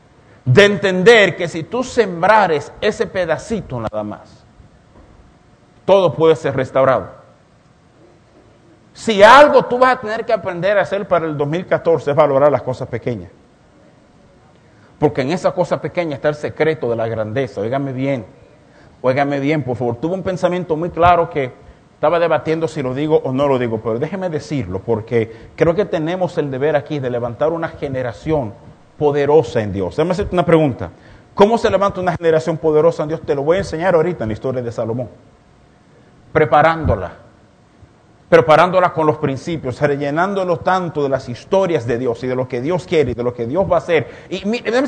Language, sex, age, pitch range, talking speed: Spanish, male, 50-69, 130-190 Hz, 175 wpm